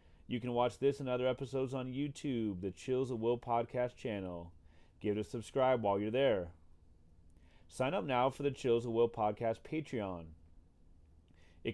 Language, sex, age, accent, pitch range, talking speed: English, male, 30-49, American, 95-130 Hz, 170 wpm